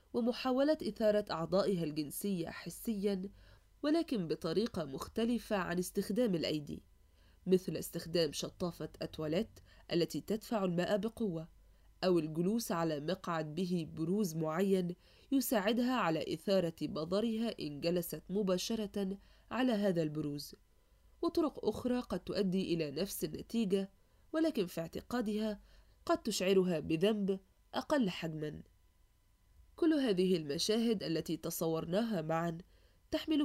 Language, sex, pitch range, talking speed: Arabic, female, 160-215 Hz, 105 wpm